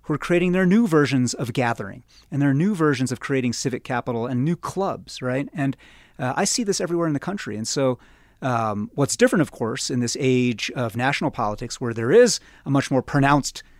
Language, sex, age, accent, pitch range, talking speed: English, male, 30-49, American, 125-185 Hz, 210 wpm